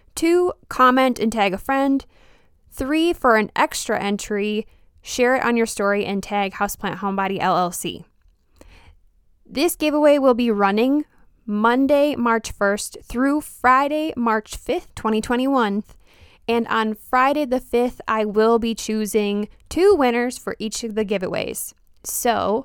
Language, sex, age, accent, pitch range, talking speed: English, female, 10-29, American, 200-270 Hz, 135 wpm